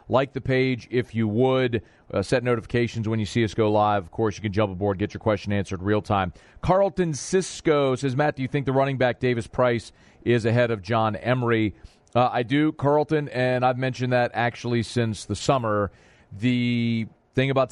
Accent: American